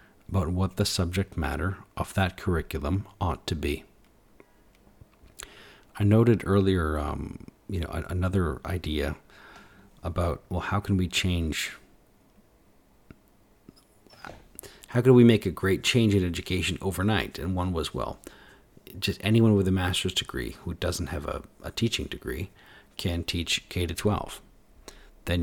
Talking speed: 135 wpm